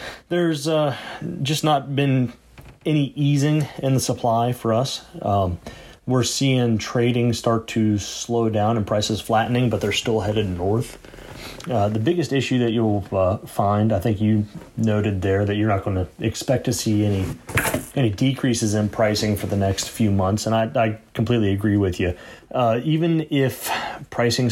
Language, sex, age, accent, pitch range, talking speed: English, male, 30-49, American, 100-120 Hz, 170 wpm